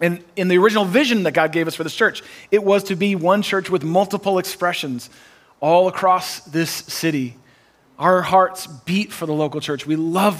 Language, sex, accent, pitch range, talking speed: English, male, American, 145-185 Hz, 200 wpm